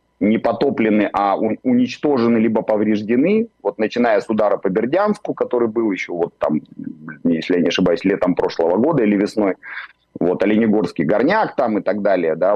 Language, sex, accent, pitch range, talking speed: Russian, male, native, 90-115 Hz, 165 wpm